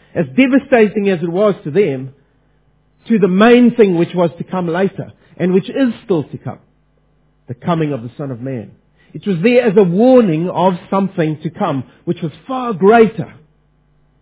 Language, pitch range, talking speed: English, 150-210 Hz, 180 wpm